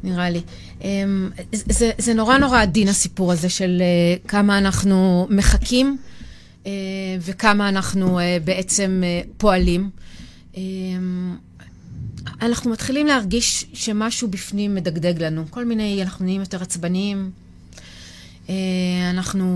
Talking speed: 100 wpm